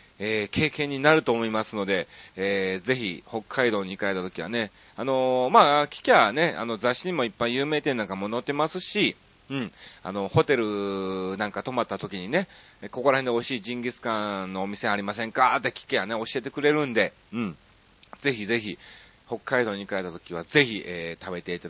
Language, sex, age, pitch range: Japanese, male, 40-59, 100-140 Hz